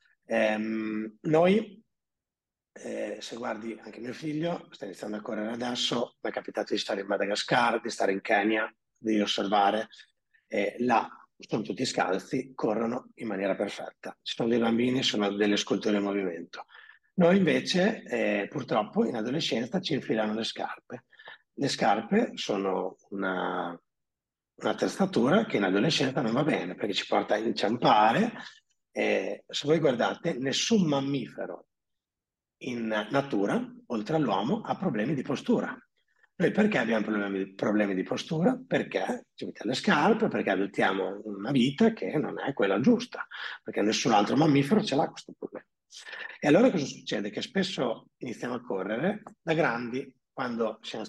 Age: 30-49